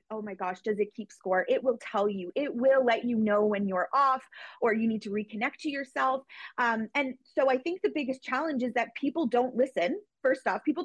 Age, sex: 30-49, female